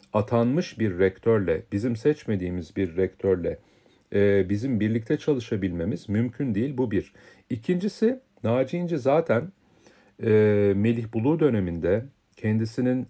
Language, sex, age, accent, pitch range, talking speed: Turkish, male, 40-59, native, 100-130 Hz, 105 wpm